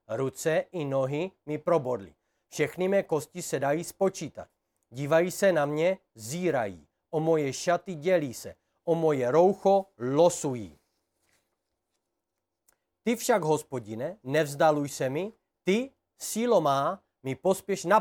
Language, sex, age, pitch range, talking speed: Czech, male, 40-59, 145-200 Hz, 125 wpm